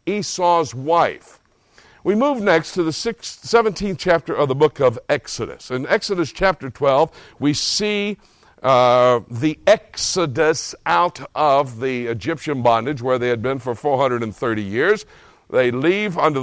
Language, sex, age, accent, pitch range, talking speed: English, male, 60-79, American, 150-215 Hz, 140 wpm